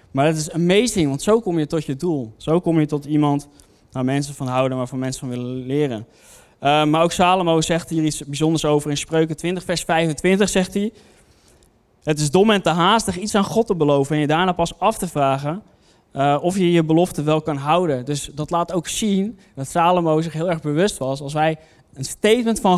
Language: Dutch